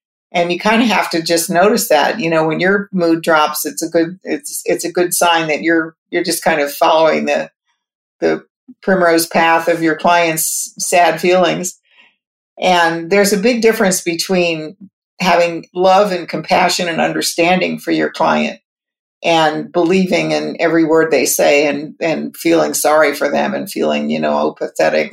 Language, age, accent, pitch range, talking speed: English, 50-69, American, 160-185 Hz, 175 wpm